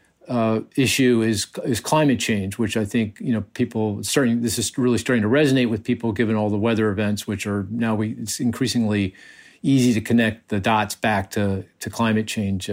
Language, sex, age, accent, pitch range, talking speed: English, male, 50-69, American, 110-125 Hz, 200 wpm